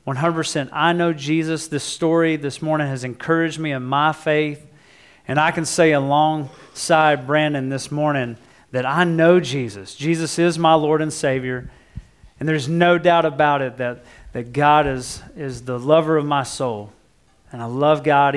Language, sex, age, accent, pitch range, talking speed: English, male, 40-59, American, 130-165 Hz, 165 wpm